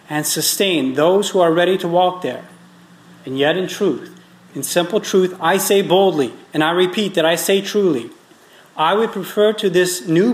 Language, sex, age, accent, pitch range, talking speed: English, male, 40-59, American, 135-165 Hz, 185 wpm